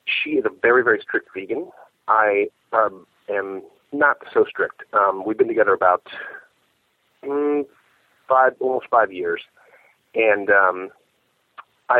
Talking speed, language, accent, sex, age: 130 wpm, English, American, male, 30-49